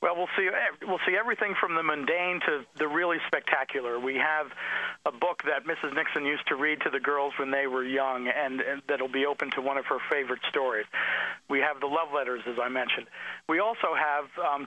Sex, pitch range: male, 130-150 Hz